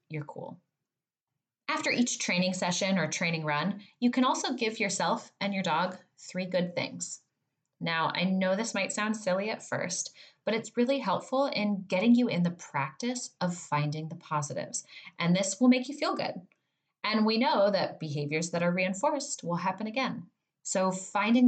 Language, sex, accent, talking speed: English, female, American, 175 wpm